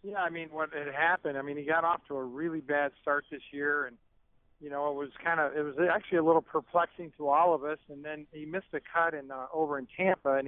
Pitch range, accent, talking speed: 145-165 Hz, American, 270 wpm